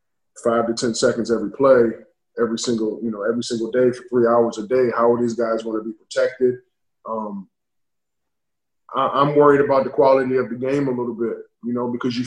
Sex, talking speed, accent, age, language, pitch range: male, 210 wpm, American, 20-39, English, 115-135 Hz